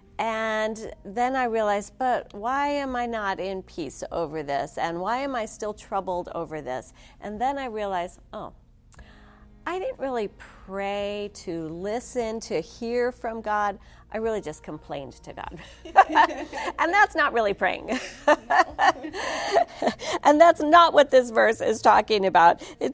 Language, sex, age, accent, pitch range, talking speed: English, female, 40-59, American, 200-280 Hz, 150 wpm